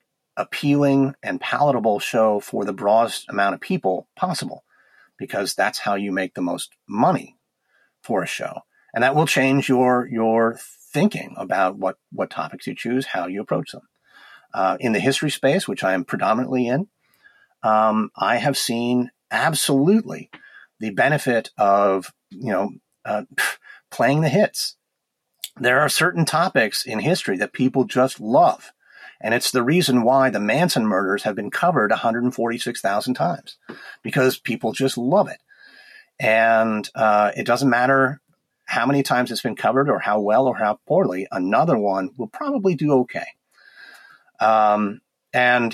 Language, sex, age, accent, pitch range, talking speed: English, male, 40-59, American, 110-140 Hz, 150 wpm